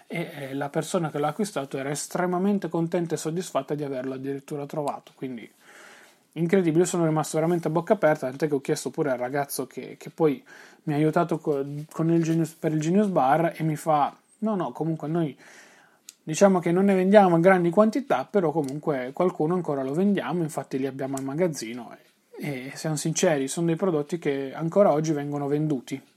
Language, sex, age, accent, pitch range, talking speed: Italian, male, 30-49, native, 150-180 Hz, 175 wpm